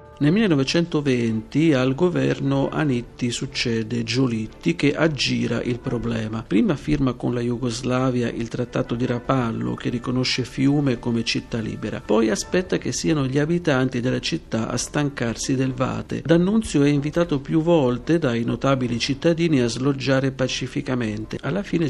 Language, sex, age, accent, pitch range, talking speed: Italian, male, 50-69, native, 120-150 Hz, 140 wpm